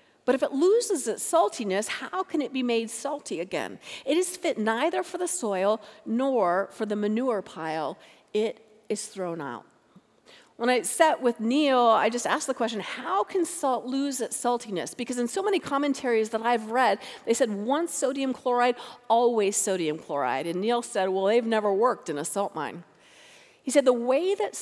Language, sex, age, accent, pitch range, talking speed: English, female, 40-59, American, 210-285 Hz, 190 wpm